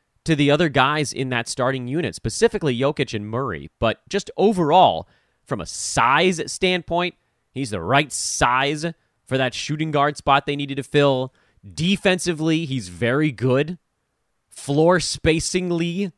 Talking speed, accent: 140 wpm, American